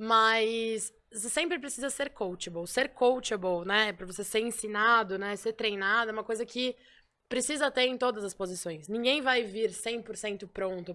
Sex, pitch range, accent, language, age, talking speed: female, 205-245 Hz, Brazilian, Portuguese, 10-29, 170 wpm